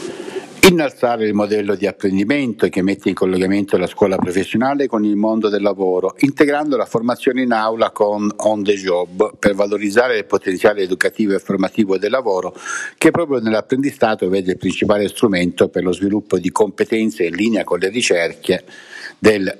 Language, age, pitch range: Italian, 60-79, 100-135 Hz